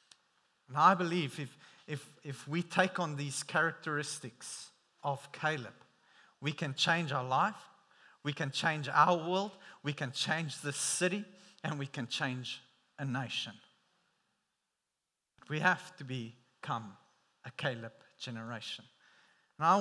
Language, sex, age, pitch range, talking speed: English, male, 40-59, 130-175 Hz, 130 wpm